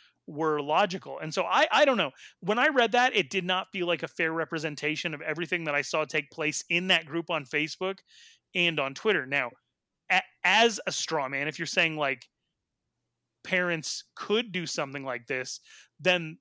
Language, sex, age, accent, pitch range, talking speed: English, male, 30-49, American, 140-180 Hz, 190 wpm